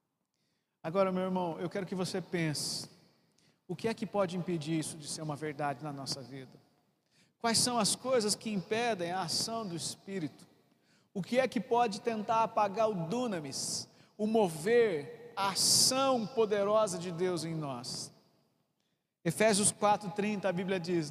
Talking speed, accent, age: 155 wpm, Brazilian, 50-69